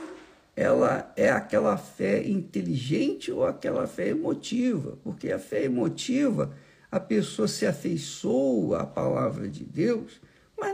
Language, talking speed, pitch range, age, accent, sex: Portuguese, 125 wpm, 160-270 Hz, 60-79, Brazilian, male